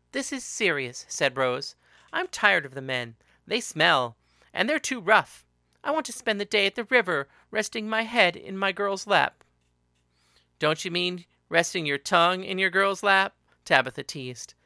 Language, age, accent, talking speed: English, 40-59, American, 180 wpm